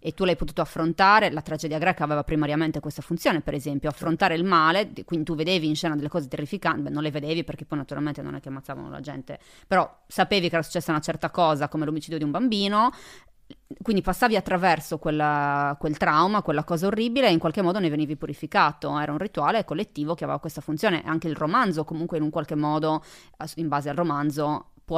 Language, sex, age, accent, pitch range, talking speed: Italian, female, 20-39, native, 150-175 Hz, 210 wpm